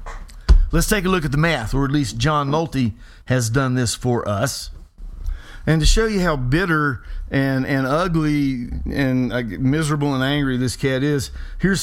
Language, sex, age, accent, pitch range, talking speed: English, male, 50-69, American, 115-165 Hz, 180 wpm